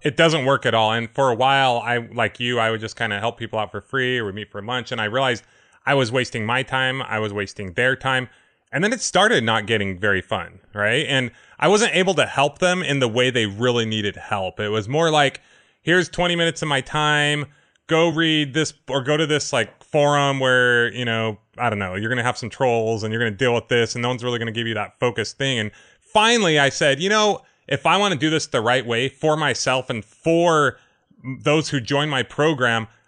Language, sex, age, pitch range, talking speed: English, male, 30-49, 115-150 Hz, 245 wpm